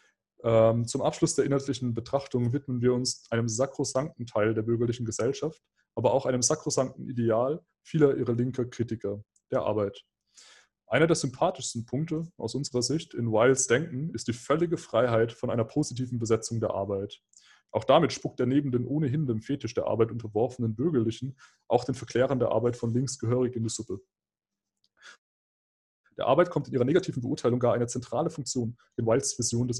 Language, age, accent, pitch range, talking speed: German, 20-39, German, 115-140 Hz, 170 wpm